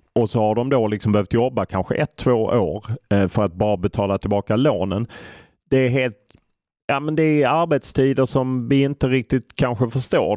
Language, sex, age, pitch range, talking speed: English, male, 30-49, 110-135 Hz, 185 wpm